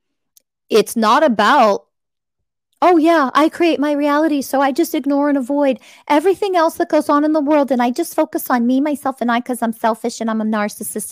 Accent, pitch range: American, 185-235 Hz